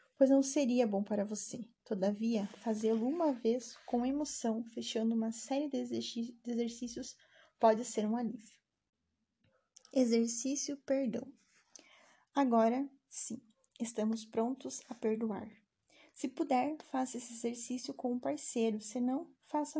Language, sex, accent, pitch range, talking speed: Portuguese, female, Brazilian, 225-265 Hz, 125 wpm